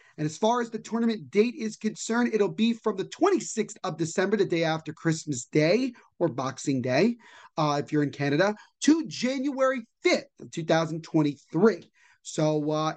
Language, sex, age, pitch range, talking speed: English, male, 30-49, 160-235 Hz, 155 wpm